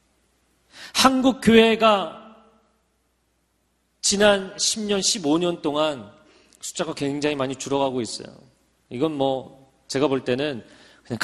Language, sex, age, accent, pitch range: Korean, male, 40-59, native, 145-225 Hz